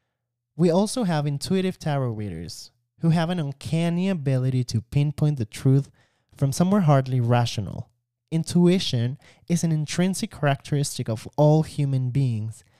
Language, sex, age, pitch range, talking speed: English, male, 20-39, 120-155 Hz, 130 wpm